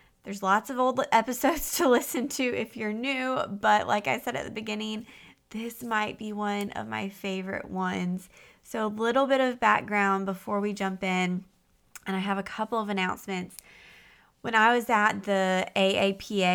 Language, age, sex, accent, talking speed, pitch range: English, 20-39, female, American, 180 wpm, 195-225 Hz